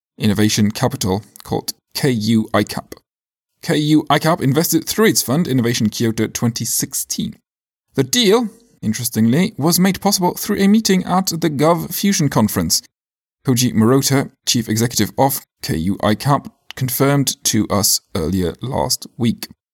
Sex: male